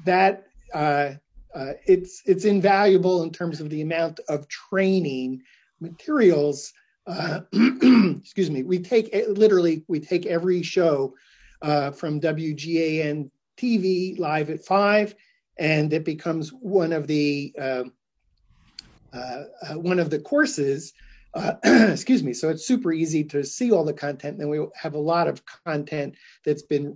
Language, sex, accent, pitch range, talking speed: English, male, American, 150-190 Hz, 145 wpm